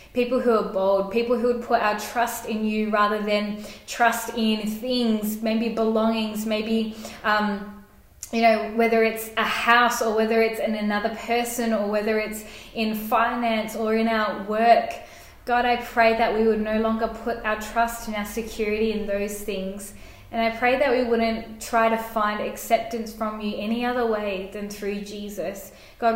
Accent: Australian